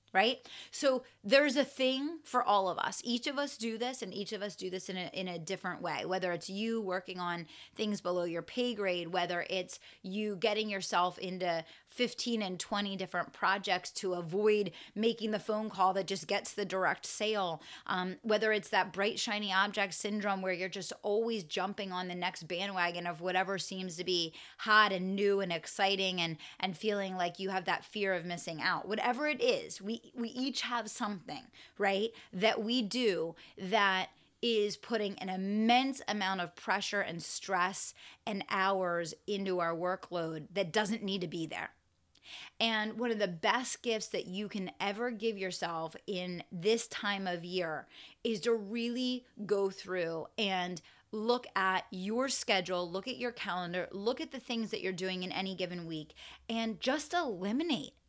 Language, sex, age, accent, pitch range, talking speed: English, female, 30-49, American, 185-225 Hz, 180 wpm